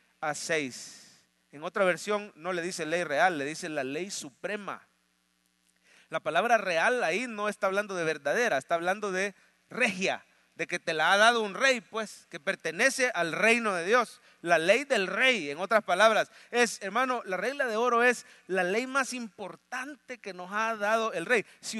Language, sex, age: English, male, 40-59